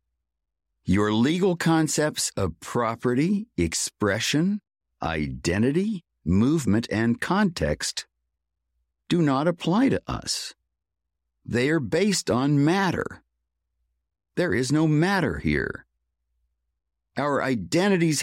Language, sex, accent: English, male, American